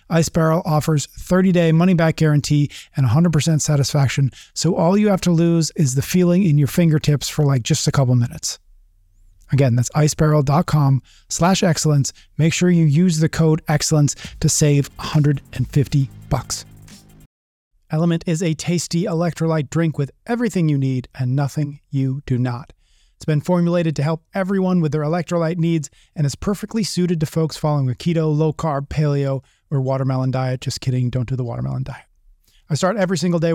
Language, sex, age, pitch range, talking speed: English, male, 30-49, 135-165 Hz, 165 wpm